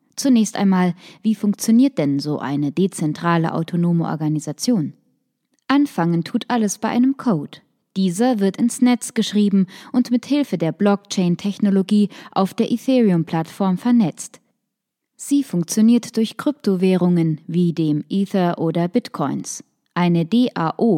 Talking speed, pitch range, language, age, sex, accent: 115 wpm, 170-230 Hz, German, 20-39, female, German